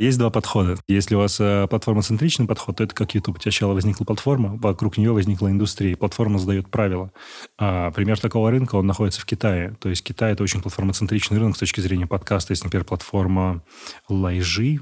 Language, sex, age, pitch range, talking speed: Russian, male, 20-39, 95-115 Hz, 185 wpm